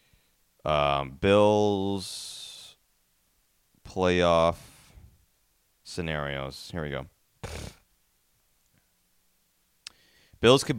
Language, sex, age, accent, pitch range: English, male, 30-49, American, 95-125 Hz